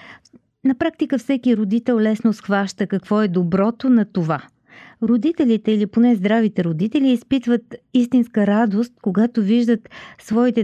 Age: 40-59